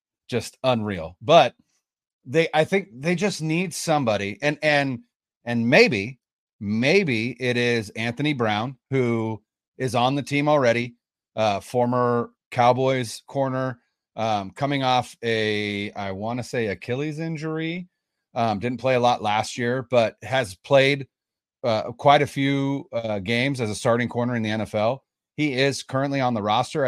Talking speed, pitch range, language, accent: 150 wpm, 110-135 Hz, English, American